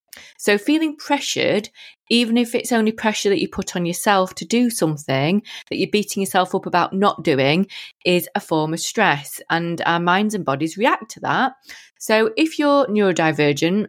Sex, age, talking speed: female, 30-49, 175 wpm